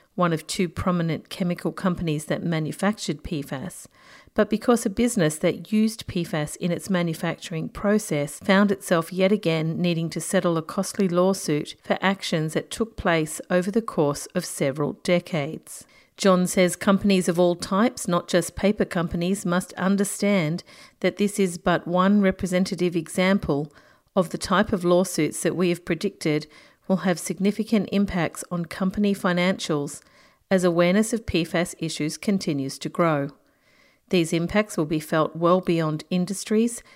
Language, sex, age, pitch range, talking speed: English, female, 40-59, 165-200 Hz, 150 wpm